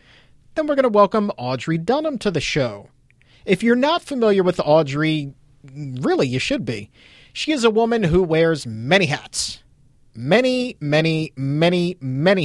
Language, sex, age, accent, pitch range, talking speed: English, male, 40-59, American, 135-195 Hz, 155 wpm